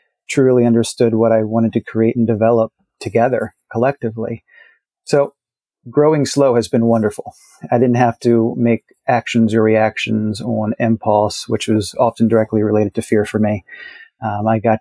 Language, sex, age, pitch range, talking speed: English, male, 40-59, 110-120 Hz, 160 wpm